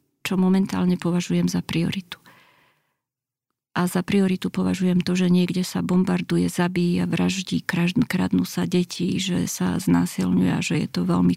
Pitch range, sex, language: 170-190 Hz, female, Slovak